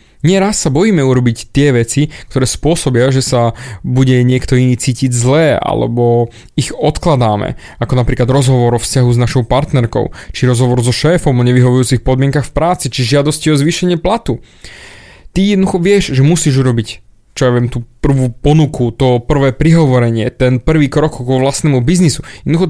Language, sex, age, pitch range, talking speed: Slovak, male, 20-39, 125-165 Hz, 165 wpm